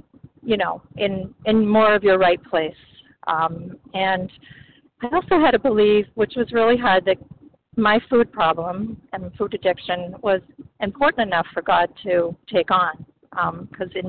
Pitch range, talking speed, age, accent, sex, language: 175-220 Hz, 160 wpm, 40-59, American, female, English